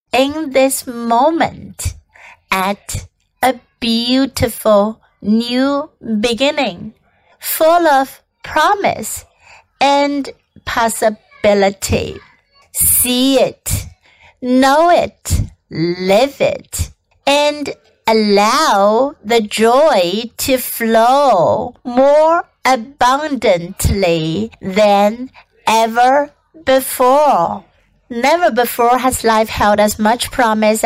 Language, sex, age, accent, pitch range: Chinese, female, 60-79, American, 210-270 Hz